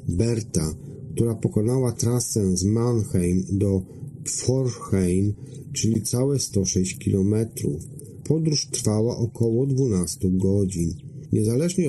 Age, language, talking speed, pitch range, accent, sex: 40-59, Polish, 90 wpm, 100-130 Hz, native, male